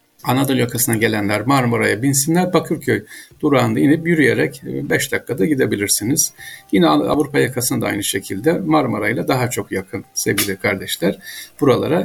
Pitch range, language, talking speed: 110-155 Hz, Turkish, 120 wpm